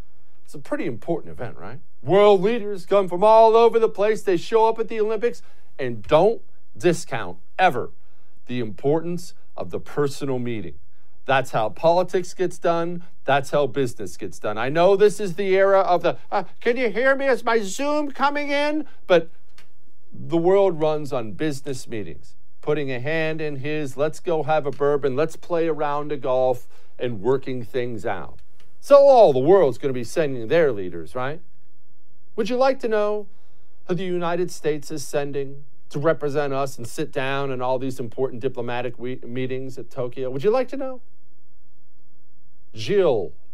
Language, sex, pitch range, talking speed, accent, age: English, male, 130-200 Hz, 175 wpm, American, 50-69